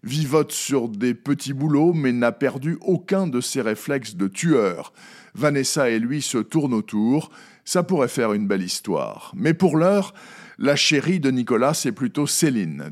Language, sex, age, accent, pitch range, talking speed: French, male, 50-69, French, 125-165 Hz, 165 wpm